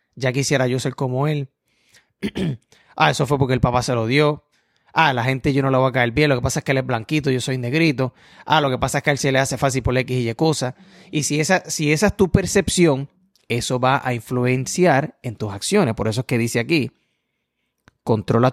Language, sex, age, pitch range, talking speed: Spanish, male, 30-49, 125-155 Hz, 245 wpm